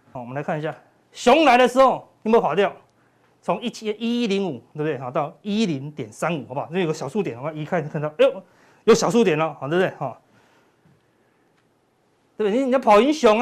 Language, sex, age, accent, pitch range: Chinese, male, 30-49, native, 155-245 Hz